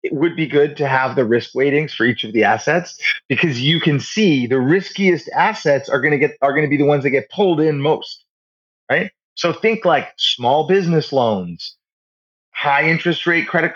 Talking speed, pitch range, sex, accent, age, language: 205 wpm, 130-170 Hz, male, American, 30-49, English